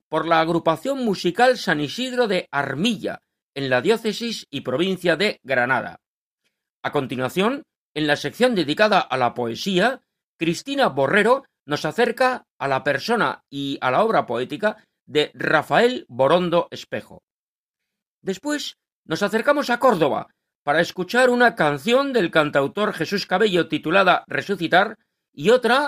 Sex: male